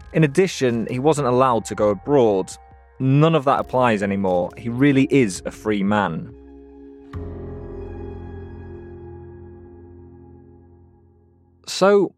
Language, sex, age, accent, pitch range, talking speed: English, male, 20-39, British, 105-145 Hz, 100 wpm